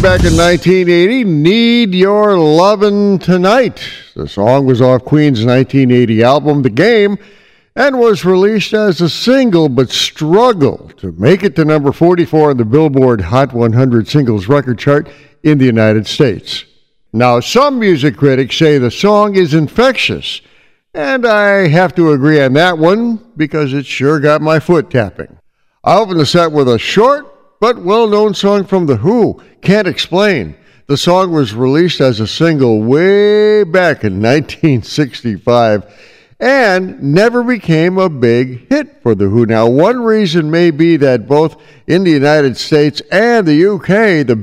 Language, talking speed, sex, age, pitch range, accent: English, 155 wpm, male, 60-79, 130-195 Hz, American